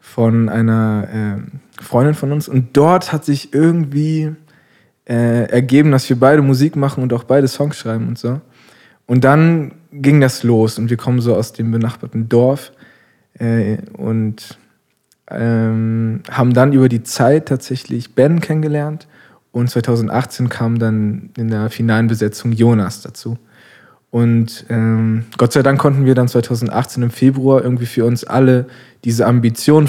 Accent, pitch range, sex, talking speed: German, 115-135 Hz, male, 145 wpm